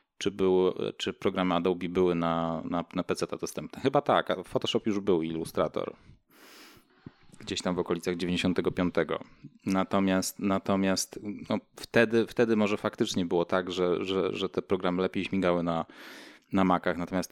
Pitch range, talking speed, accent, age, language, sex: 90-100 Hz, 150 wpm, native, 20-39, Polish, male